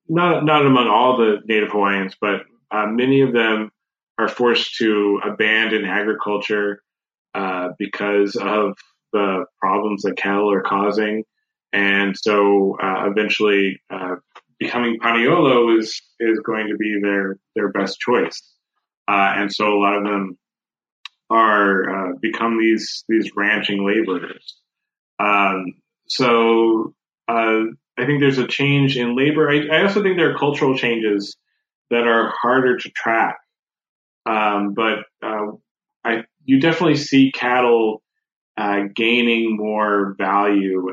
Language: English